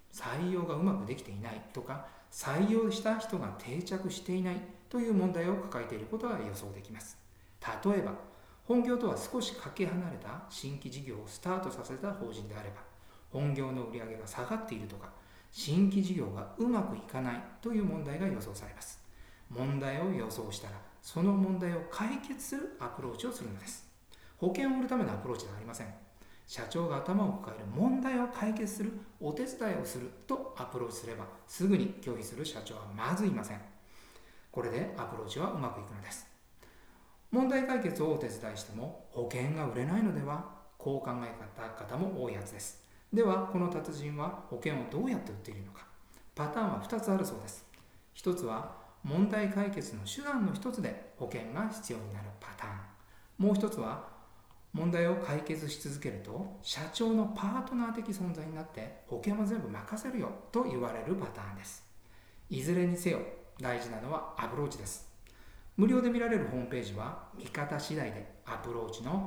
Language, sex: Japanese, male